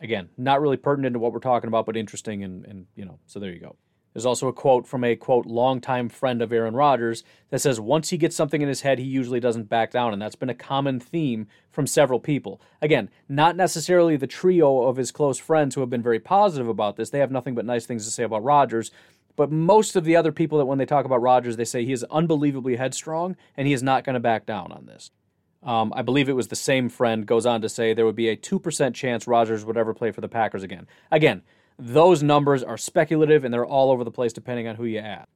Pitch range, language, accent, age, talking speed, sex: 115-145 Hz, English, American, 30-49, 255 wpm, male